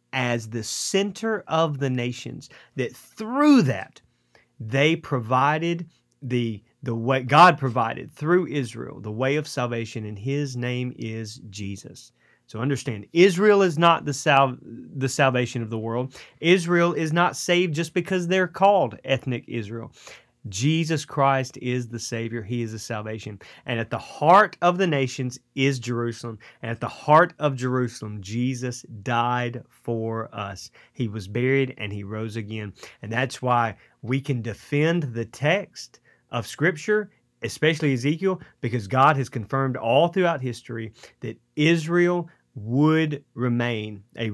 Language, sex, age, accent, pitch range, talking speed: English, male, 30-49, American, 115-155 Hz, 145 wpm